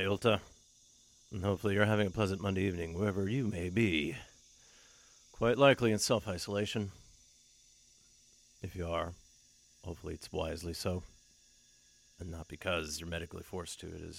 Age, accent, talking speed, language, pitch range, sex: 40-59, American, 140 wpm, English, 95-150 Hz, male